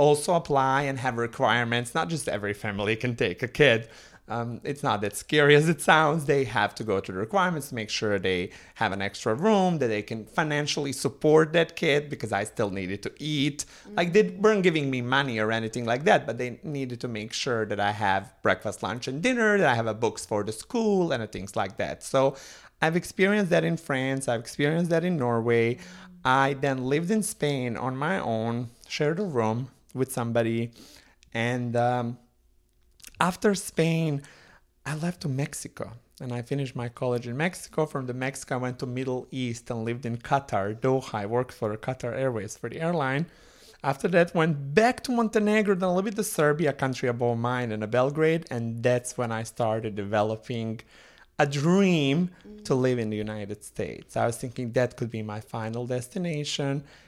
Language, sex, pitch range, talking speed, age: English, male, 115-155 Hz, 195 wpm, 30-49